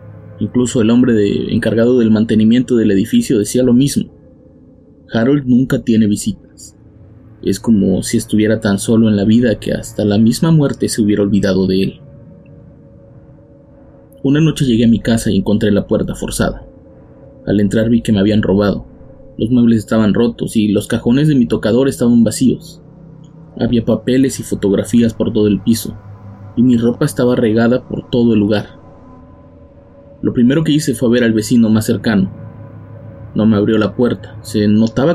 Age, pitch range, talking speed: 30-49, 105-125 Hz, 165 wpm